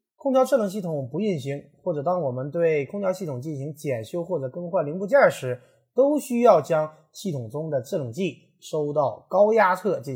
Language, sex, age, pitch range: Chinese, male, 30-49, 135-205 Hz